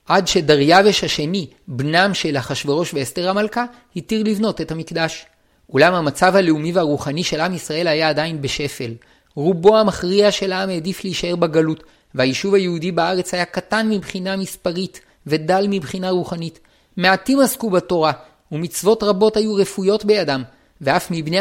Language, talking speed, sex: Hebrew, 135 wpm, male